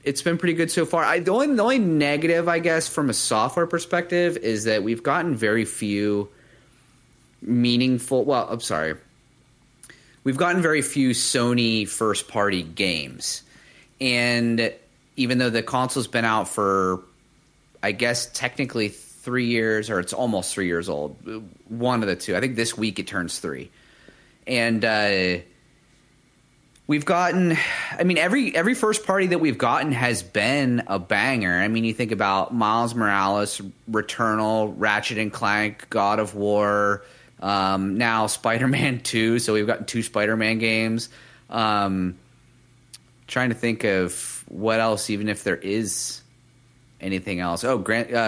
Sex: male